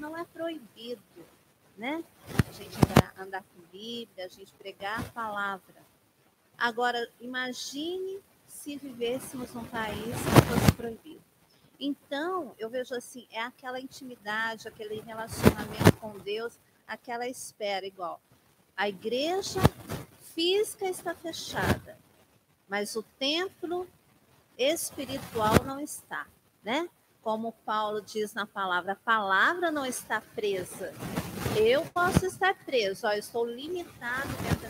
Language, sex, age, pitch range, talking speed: Portuguese, female, 50-69, 210-300 Hz, 120 wpm